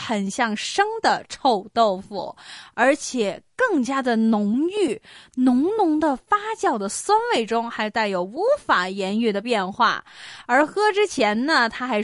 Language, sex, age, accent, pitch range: Chinese, female, 20-39, native, 220-345 Hz